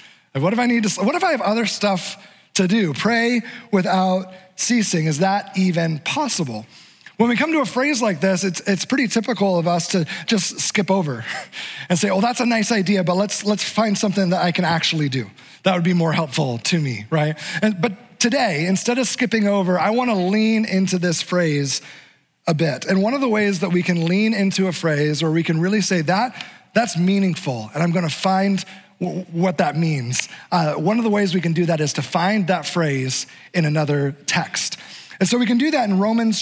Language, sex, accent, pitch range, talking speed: English, male, American, 165-215 Hz, 215 wpm